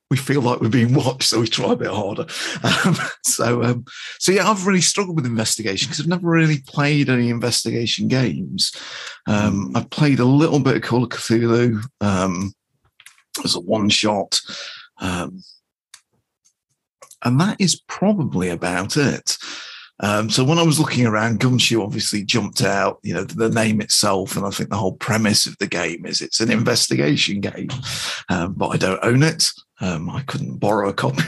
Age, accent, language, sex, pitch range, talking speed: 40-59, British, English, male, 110-150 Hz, 180 wpm